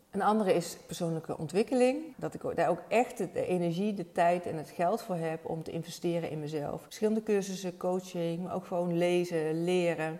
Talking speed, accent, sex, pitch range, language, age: 190 wpm, Dutch, female, 160-180 Hz, Dutch, 30-49